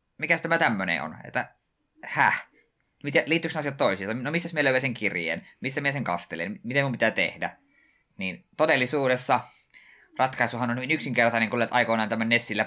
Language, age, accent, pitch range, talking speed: Finnish, 20-39, native, 100-130 Hz, 155 wpm